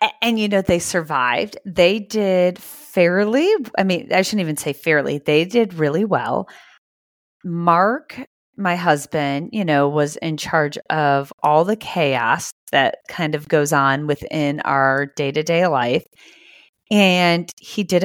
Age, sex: 30-49, female